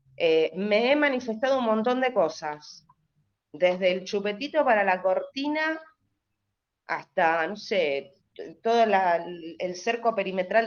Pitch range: 180-255 Hz